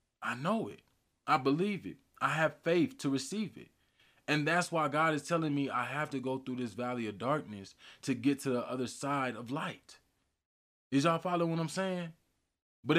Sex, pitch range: male, 115-145 Hz